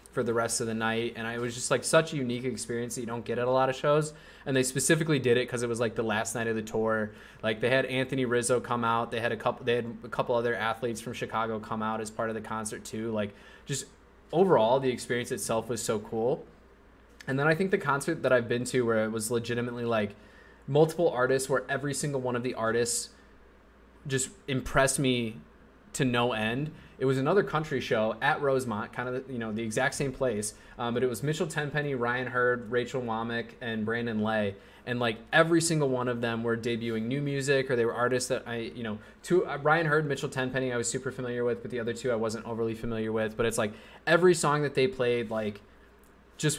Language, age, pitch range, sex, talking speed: English, 20-39, 115-135 Hz, male, 235 wpm